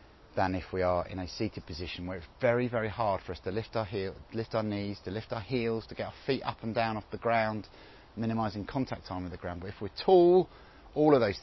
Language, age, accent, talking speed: English, 40-59, British, 255 wpm